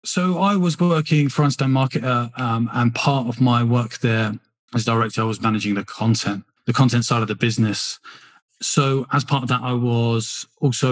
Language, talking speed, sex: English, 190 wpm, male